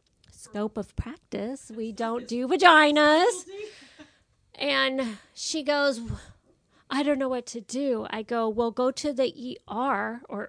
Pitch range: 215-280 Hz